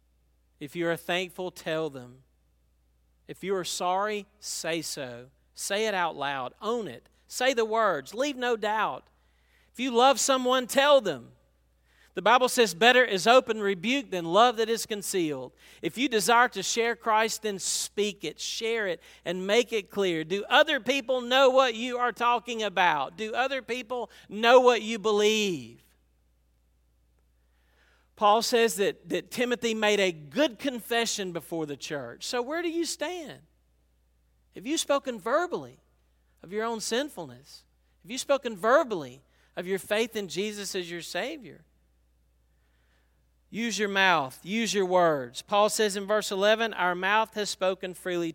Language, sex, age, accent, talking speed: English, male, 40-59, American, 155 wpm